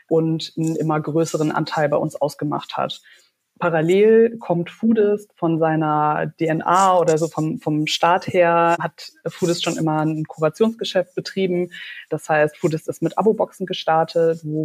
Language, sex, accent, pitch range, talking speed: German, female, German, 155-175 Hz, 150 wpm